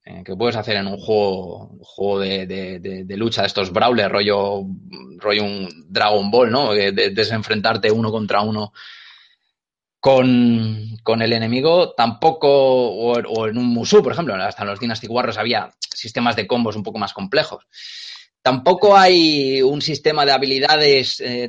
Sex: male